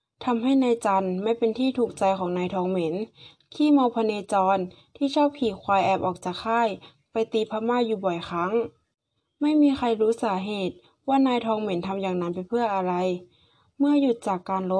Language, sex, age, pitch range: Thai, female, 20-39, 190-235 Hz